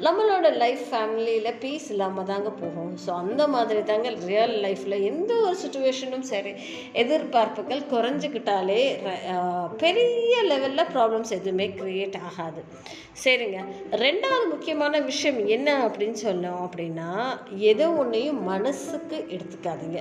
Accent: native